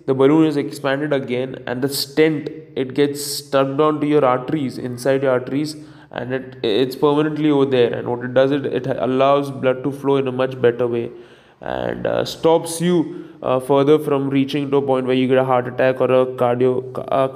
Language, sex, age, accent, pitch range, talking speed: English, male, 20-39, Indian, 125-145 Hz, 205 wpm